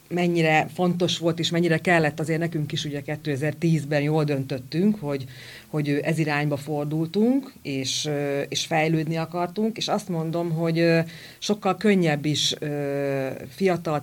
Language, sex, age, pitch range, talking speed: Hungarian, female, 40-59, 150-185 Hz, 130 wpm